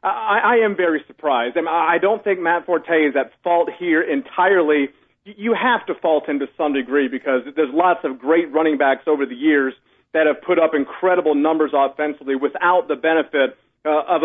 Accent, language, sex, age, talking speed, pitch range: American, English, male, 40-59, 185 wpm, 145-180 Hz